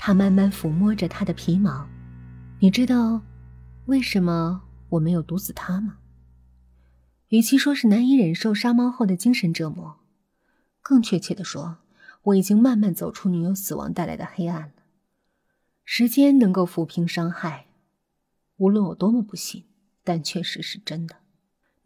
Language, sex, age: Chinese, female, 20-39